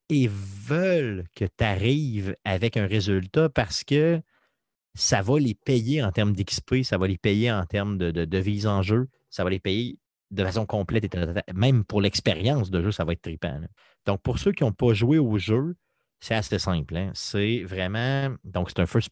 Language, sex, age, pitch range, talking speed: French, male, 30-49, 100-130 Hz, 200 wpm